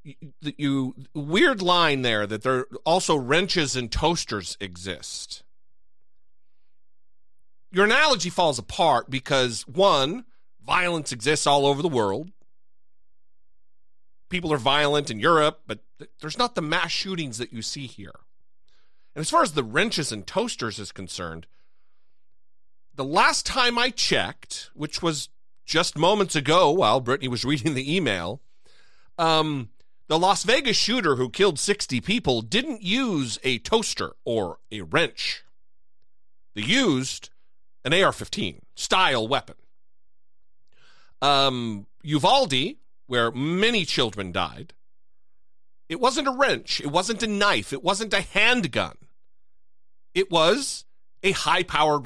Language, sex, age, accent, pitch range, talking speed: English, male, 40-59, American, 110-180 Hz, 125 wpm